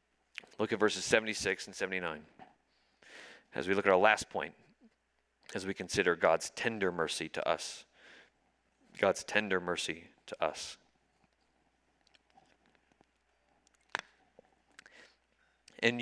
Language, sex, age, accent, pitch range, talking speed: English, male, 30-49, American, 100-140 Hz, 100 wpm